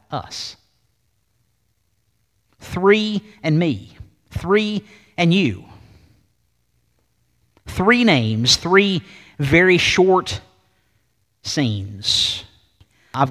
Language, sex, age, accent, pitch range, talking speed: English, male, 50-69, American, 110-170 Hz, 65 wpm